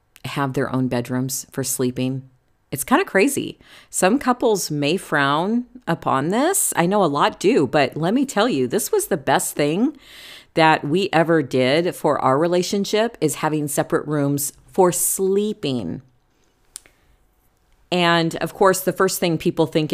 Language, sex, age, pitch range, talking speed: English, female, 40-59, 135-180 Hz, 155 wpm